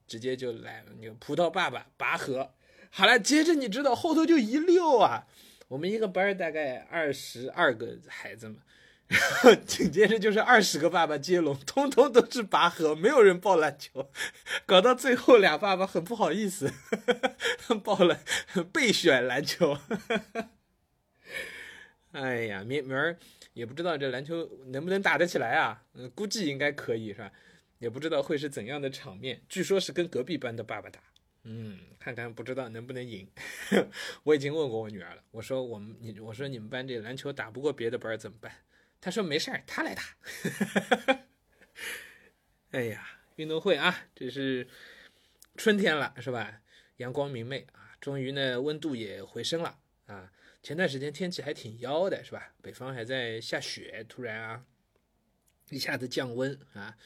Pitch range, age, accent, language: 125-205 Hz, 20-39, native, Chinese